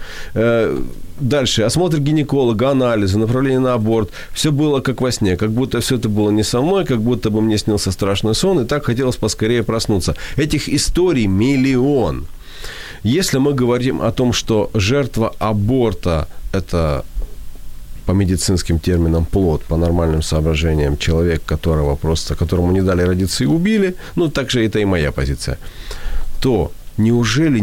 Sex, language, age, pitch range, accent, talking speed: male, Ukrainian, 40-59, 80-120 Hz, native, 150 wpm